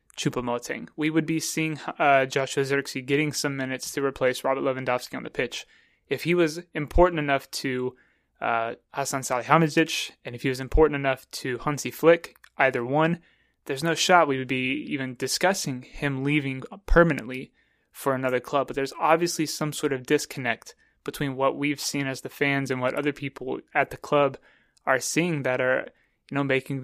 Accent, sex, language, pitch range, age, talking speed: American, male, English, 135-160 Hz, 20-39, 180 wpm